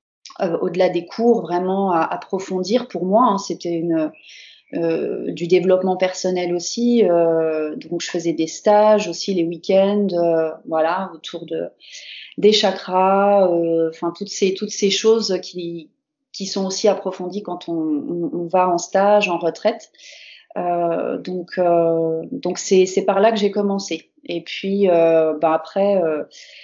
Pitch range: 170-205 Hz